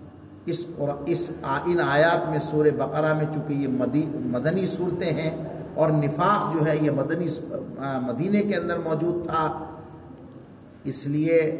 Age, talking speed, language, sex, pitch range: 50-69, 140 wpm, Urdu, male, 145-180 Hz